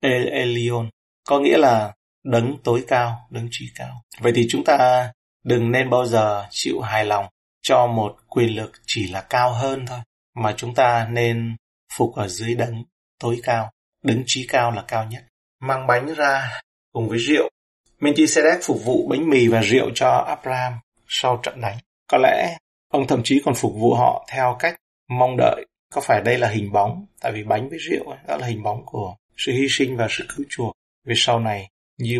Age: 30-49